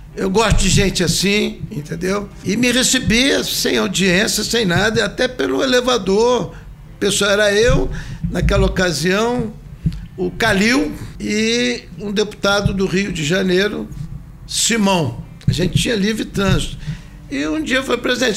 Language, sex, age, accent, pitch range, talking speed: Portuguese, male, 60-79, Brazilian, 160-235 Hz, 140 wpm